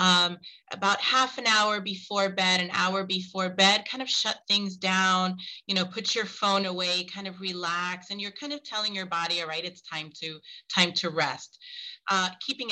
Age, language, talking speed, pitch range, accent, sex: 30-49, English, 200 wpm, 170-205 Hz, American, female